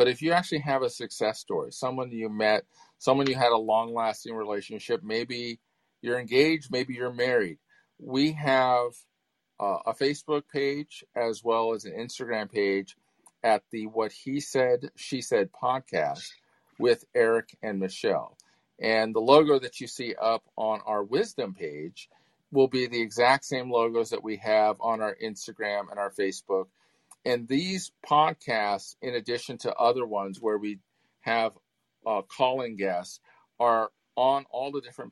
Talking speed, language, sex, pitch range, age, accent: 160 wpm, English, male, 110-135 Hz, 40-59, American